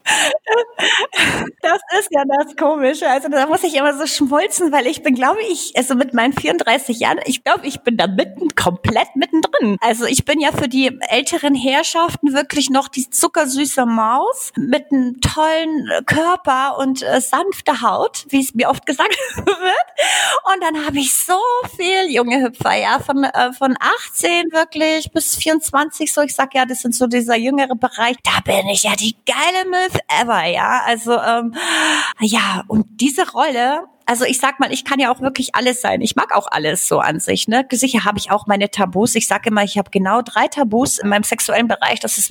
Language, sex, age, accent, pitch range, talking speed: German, female, 30-49, German, 230-300 Hz, 195 wpm